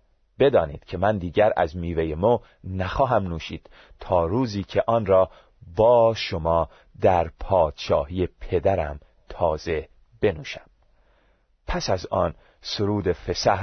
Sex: male